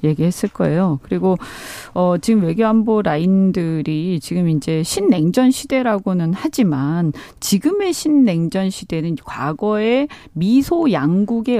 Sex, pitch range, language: female, 165-260 Hz, Korean